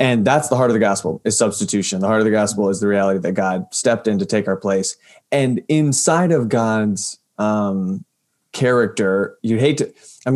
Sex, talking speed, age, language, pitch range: male, 205 wpm, 20-39, English, 100-120 Hz